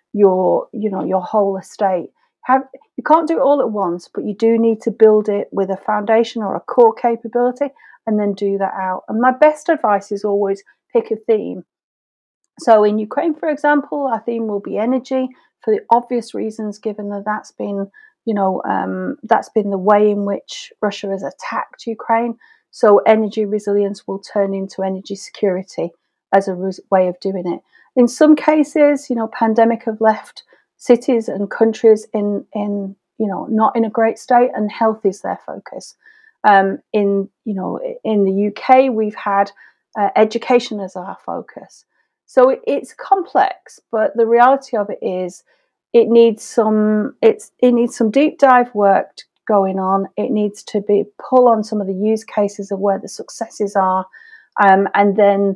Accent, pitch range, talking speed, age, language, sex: British, 200-245 Hz, 180 wpm, 40-59, English, female